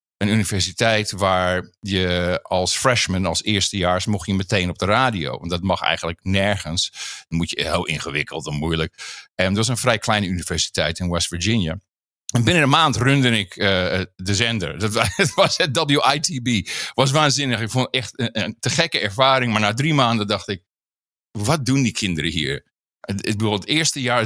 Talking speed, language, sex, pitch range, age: 185 wpm, Dutch, male, 100-130 Hz, 50-69